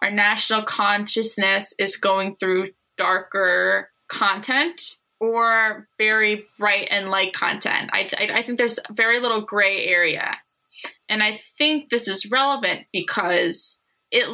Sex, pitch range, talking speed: female, 200-240 Hz, 130 wpm